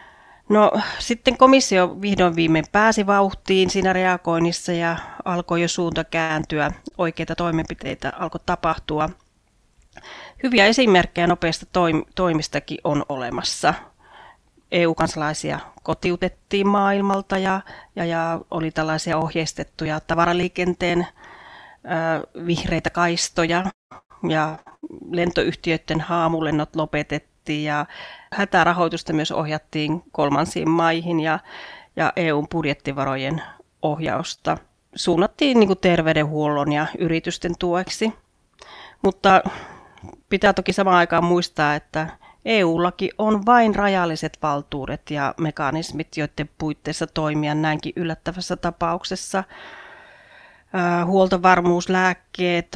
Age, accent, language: 30-49, native, Finnish